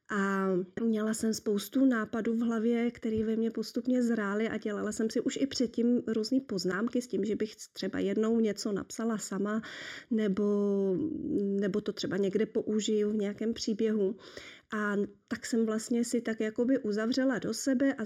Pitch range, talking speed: 200-230 Hz, 165 wpm